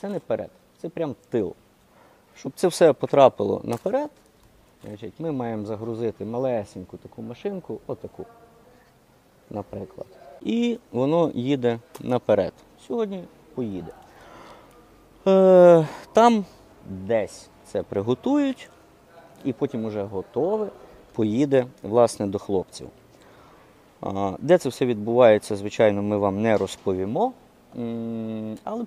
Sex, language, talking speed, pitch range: male, Ukrainian, 100 wpm, 105-145 Hz